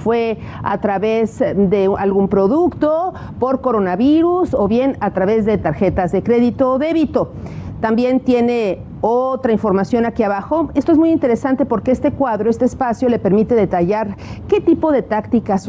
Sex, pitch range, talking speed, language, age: female, 210-280 Hz, 155 wpm, Spanish, 40-59